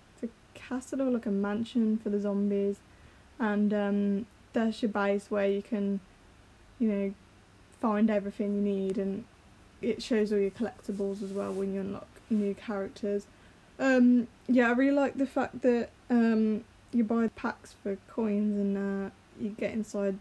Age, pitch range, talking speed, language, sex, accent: 10-29, 200-225 Hz, 155 wpm, English, female, British